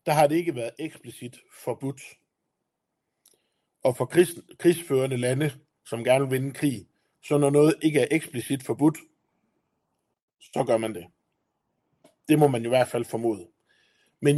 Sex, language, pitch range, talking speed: male, Danish, 125-165 Hz, 150 wpm